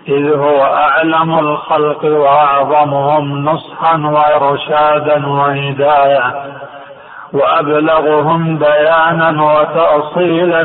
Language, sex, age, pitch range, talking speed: Arabic, male, 50-69, 140-155 Hz, 60 wpm